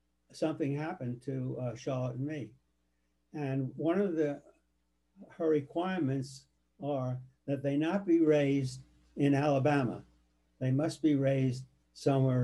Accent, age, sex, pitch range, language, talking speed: American, 60-79, male, 115-150 Hz, English, 125 wpm